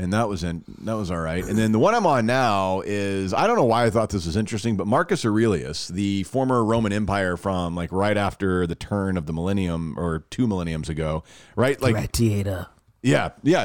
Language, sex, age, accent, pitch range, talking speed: English, male, 40-59, American, 100-125 Hz, 215 wpm